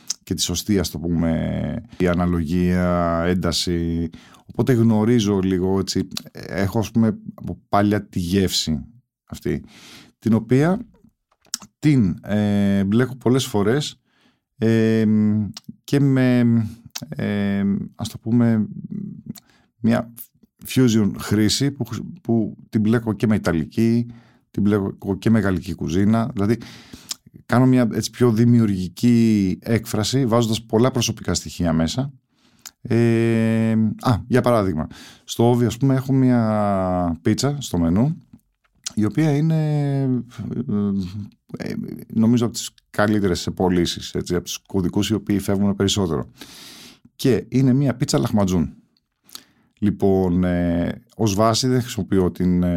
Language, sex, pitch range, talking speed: Greek, male, 95-120 Hz, 115 wpm